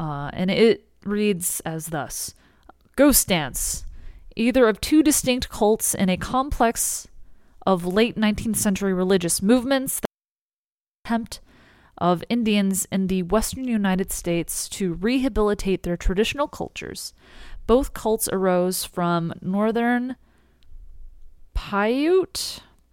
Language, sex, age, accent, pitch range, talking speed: English, female, 30-49, American, 170-225 Hz, 110 wpm